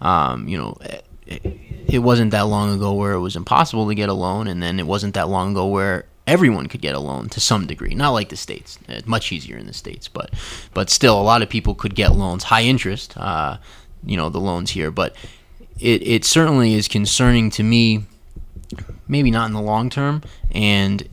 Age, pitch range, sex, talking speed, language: 20-39, 95-110 Hz, male, 215 wpm, English